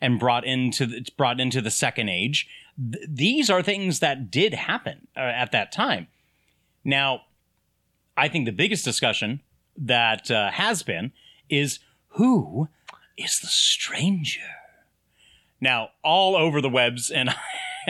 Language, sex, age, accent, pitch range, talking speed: English, male, 30-49, American, 120-160 Hz, 140 wpm